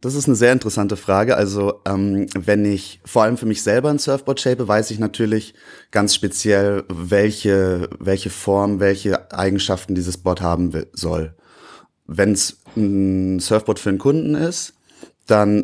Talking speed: 160 wpm